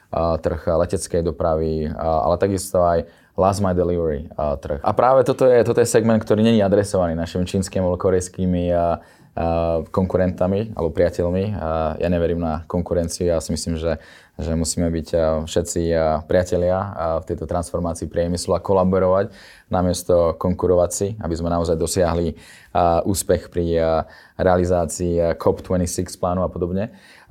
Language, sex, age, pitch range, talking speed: Slovak, male, 20-39, 80-95 Hz, 140 wpm